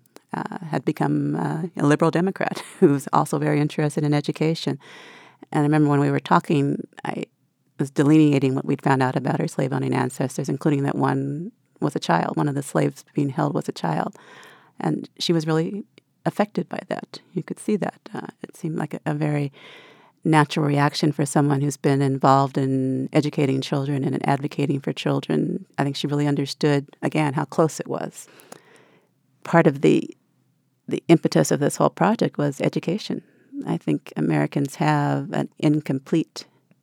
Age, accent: 40-59, American